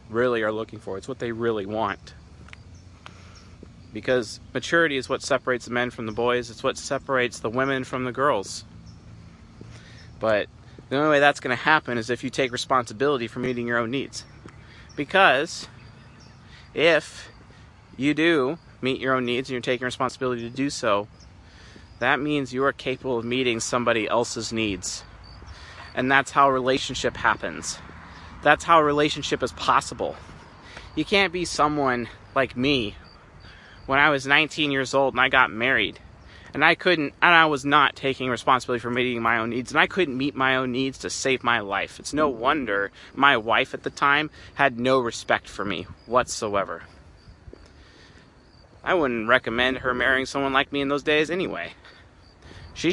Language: English